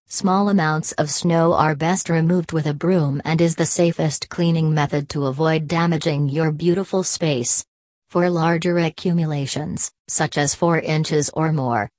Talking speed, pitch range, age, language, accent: 155 wpm, 150-175 Hz, 40-59, English, American